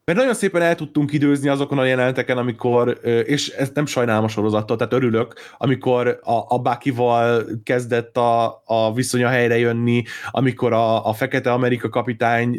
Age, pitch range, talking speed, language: 20-39, 120-150 Hz, 155 wpm, Hungarian